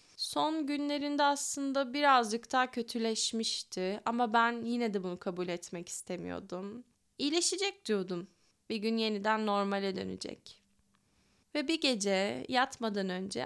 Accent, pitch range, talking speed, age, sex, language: native, 195-245 Hz, 115 wpm, 10-29, female, Turkish